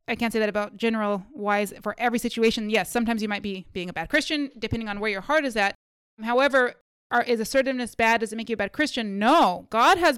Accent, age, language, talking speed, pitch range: American, 20-39, English, 235 wpm, 225-275 Hz